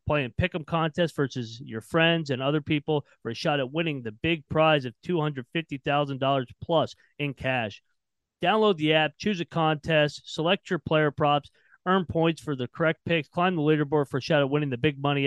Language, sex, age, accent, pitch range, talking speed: English, male, 30-49, American, 130-160 Hz, 195 wpm